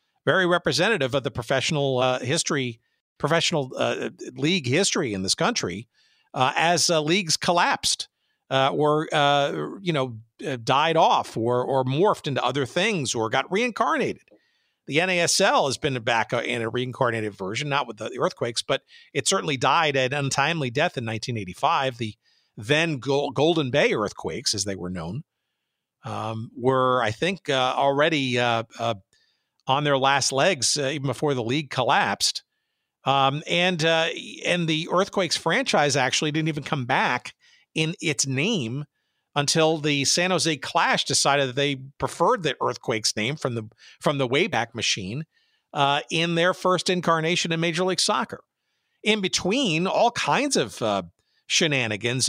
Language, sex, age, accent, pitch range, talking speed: English, male, 50-69, American, 125-165 Hz, 155 wpm